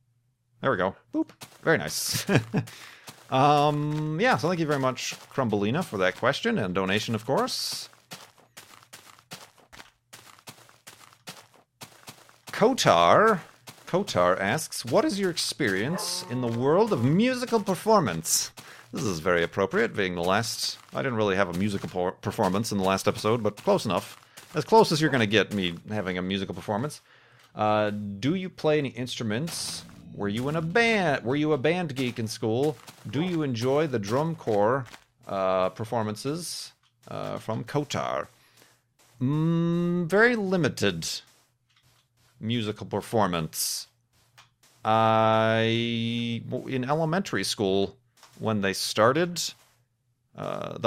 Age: 40-59